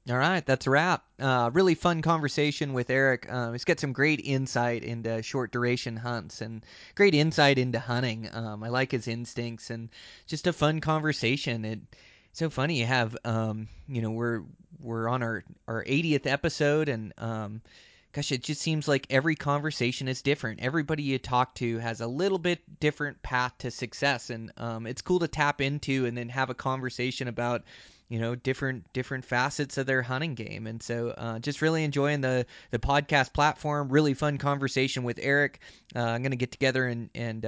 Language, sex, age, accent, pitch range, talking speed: English, male, 20-39, American, 120-145 Hz, 190 wpm